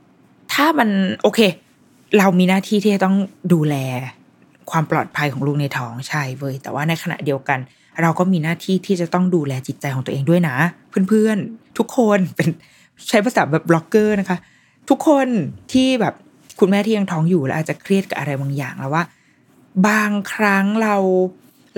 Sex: female